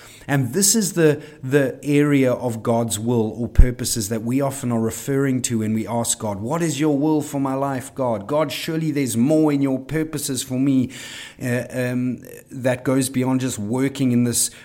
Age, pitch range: 30-49, 115-140 Hz